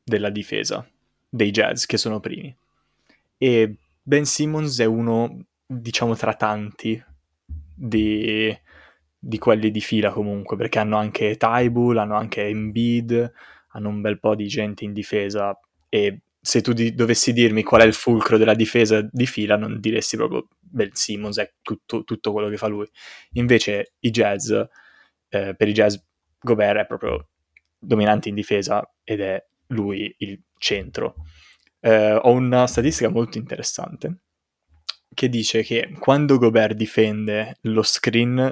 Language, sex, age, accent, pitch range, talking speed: Italian, male, 20-39, native, 105-115 Hz, 145 wpm